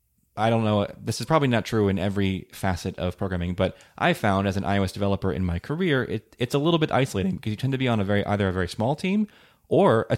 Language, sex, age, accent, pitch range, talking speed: English, male, 20-39, American, 100-125 Hz, 260 wpm